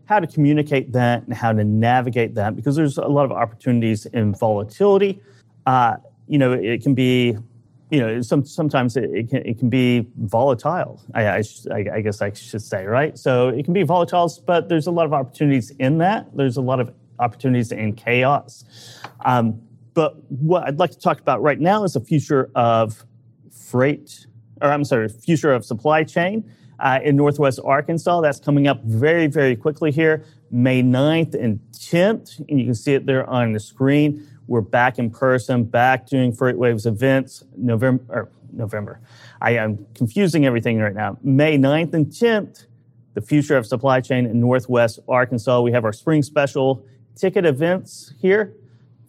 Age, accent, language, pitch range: 30-49, American, English, 120-150 Hz